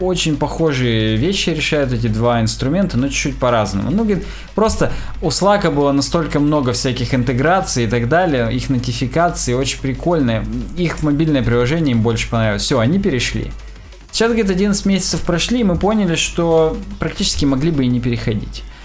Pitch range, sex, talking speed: 115-160 Hz, male, 160 wpm